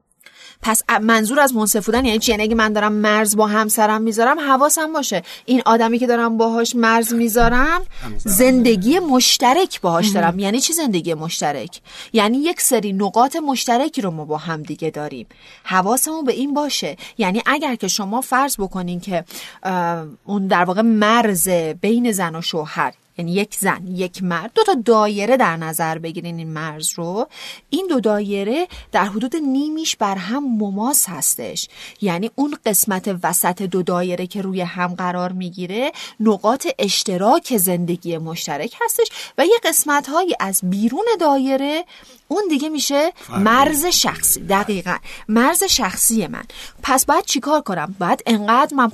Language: Persian